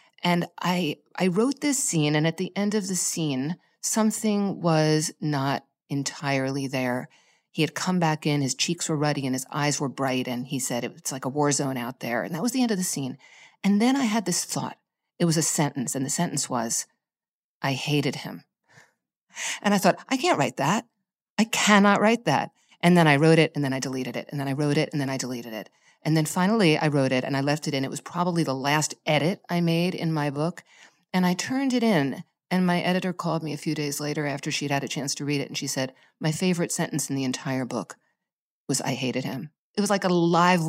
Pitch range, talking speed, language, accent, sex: 145-200 Hz, 235 wpm, English, American, female